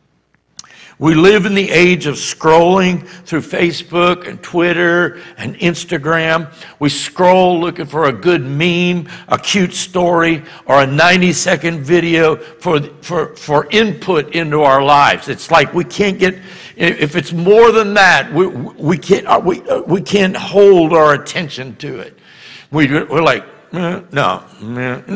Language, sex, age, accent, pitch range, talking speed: English, male, 60-79, American, 150-185 Hz, 145 wpm